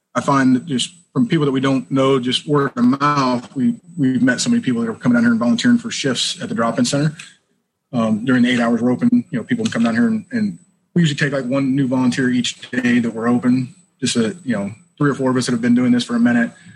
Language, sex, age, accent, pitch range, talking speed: English, male, 30-49, American, 120-175 Hz, 275 wpm